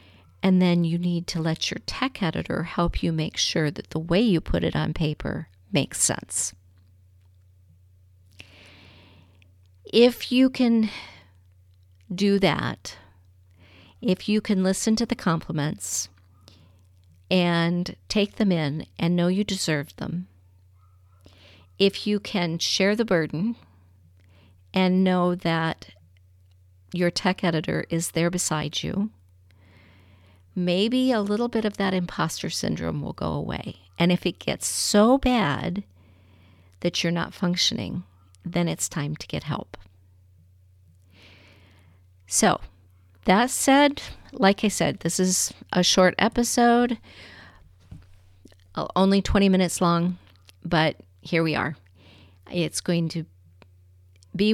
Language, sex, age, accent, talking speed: English, female, 50-69, American, 120 wpm